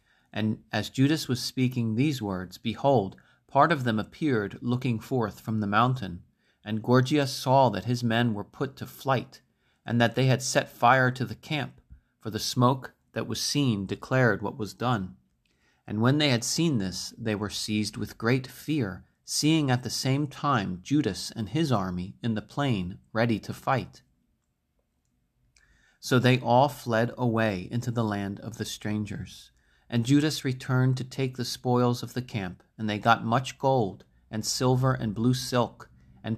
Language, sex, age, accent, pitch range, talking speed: English, male, 40-59, American, 105-130 Hz, 175 wpm